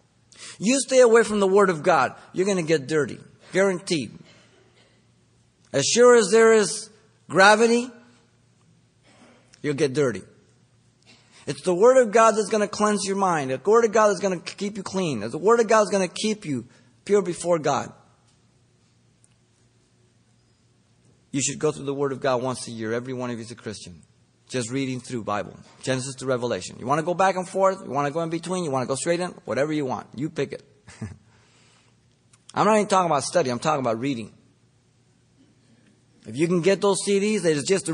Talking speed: 200 wpm